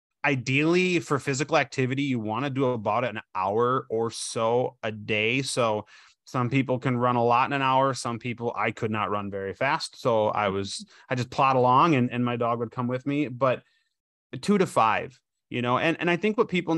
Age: 30-49